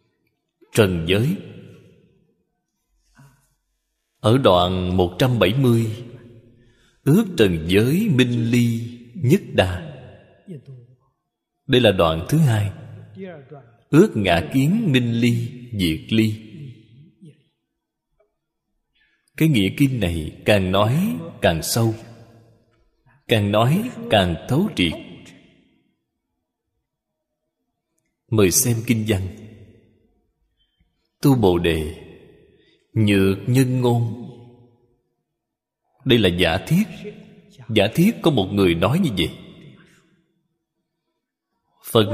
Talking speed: 85 wpm